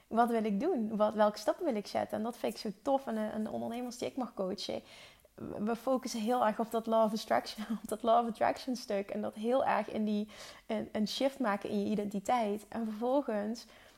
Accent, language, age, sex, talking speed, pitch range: Dutch, Dutch, 30-49, female, 215 wpm, 210-245 Hz